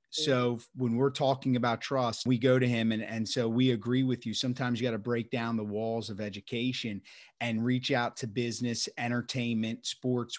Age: 30-49